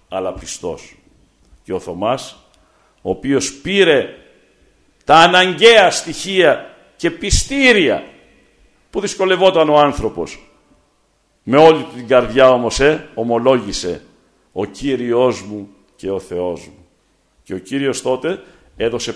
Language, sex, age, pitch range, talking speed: Greek, male, 60-79, 130-205 Hz, 115 wpm